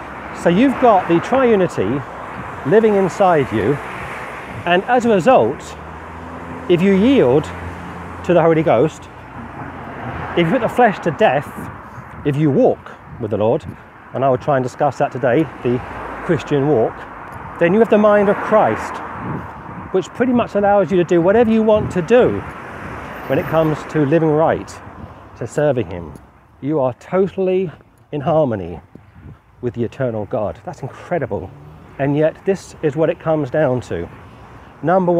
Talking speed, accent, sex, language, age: 155 wpm, British, male, English, 40-59